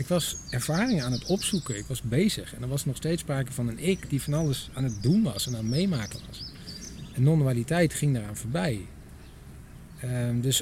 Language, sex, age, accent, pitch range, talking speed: Dutch, male, 40-59, Dutch, 125-155 Hz, 210 wpm